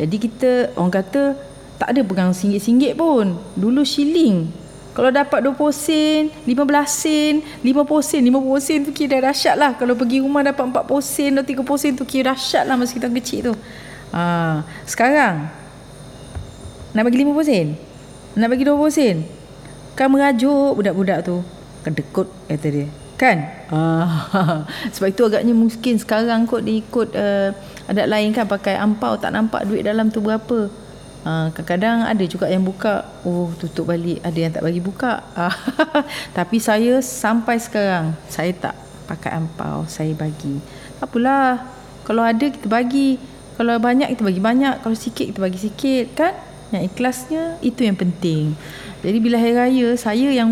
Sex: female